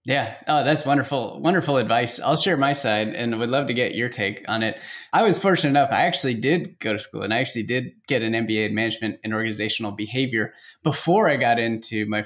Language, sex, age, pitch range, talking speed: English, male, 20-39, 115-160 Hz, 225 wpm